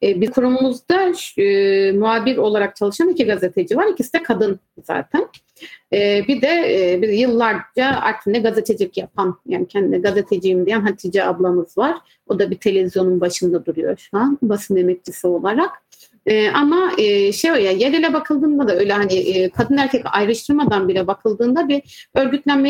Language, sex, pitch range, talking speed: Turkish, female, 195-255 Hz, 160 wpm